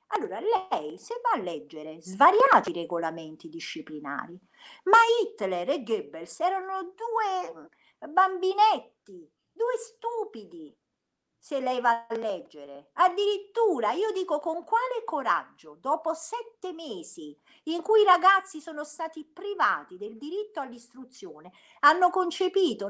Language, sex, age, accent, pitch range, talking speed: Italian, female, 50-69, native, 240-385 Hz, 115 wpm